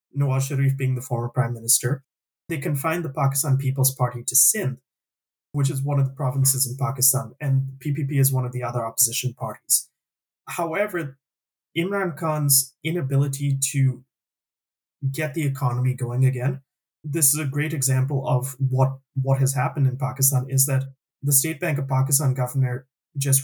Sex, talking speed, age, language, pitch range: male, 160 wpm, 20-39, English, 130-145 Hz